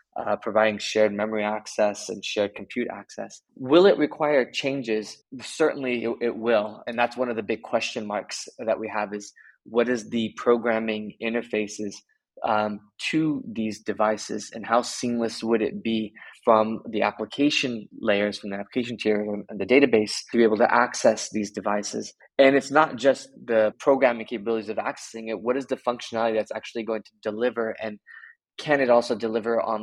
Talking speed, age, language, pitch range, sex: 175 wpm, 20-39, English, 105-120 Hz, male